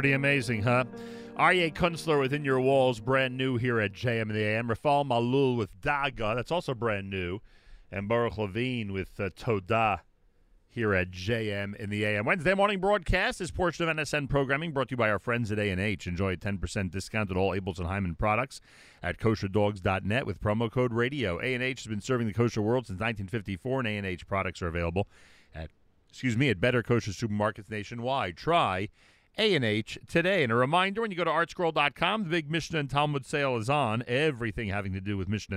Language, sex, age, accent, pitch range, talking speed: English, male, 40-59, American, 100-130 Hz, 190 wpm